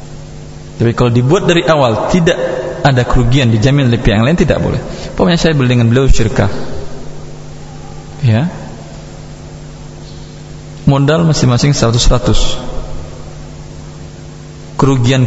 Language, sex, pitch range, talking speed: Indonesian, male, 115-150 Hz, 95 wpm